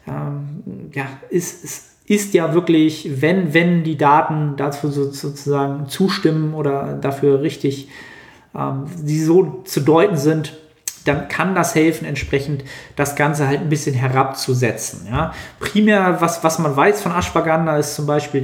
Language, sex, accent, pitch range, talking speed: German, male, German, 140-160 Hz, 145 wpm